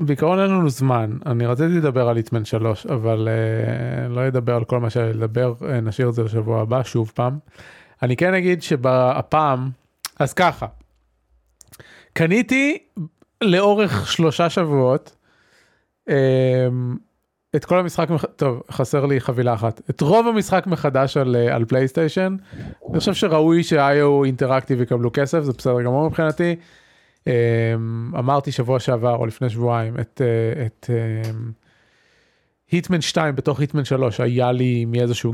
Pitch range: 120-155 Hz